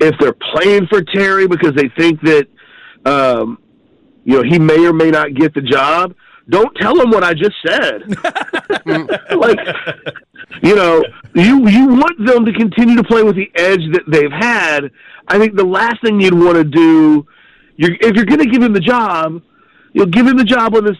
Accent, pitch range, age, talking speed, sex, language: American, 140-180 Hz, 40-59, 195 wpm, male, English